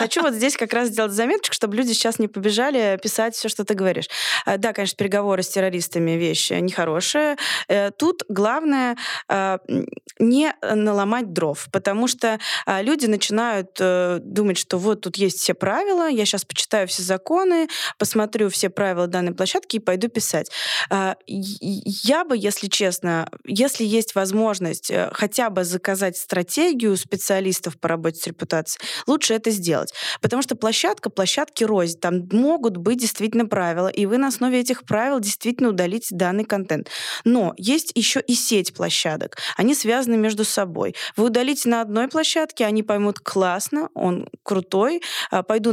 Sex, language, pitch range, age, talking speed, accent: female, Russian, 185-240 Hz, 20-39, 150 wpm, native